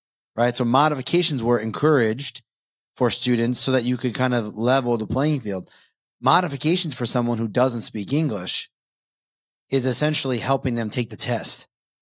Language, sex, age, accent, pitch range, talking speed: English, male, 30-49, American, 115-150 Hz, 155 wpm